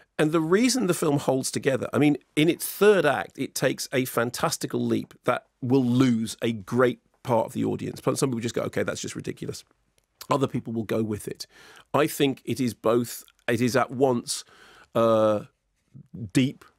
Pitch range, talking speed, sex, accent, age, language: 120-150 Hz, 190 wpm, male, British, 40-59, English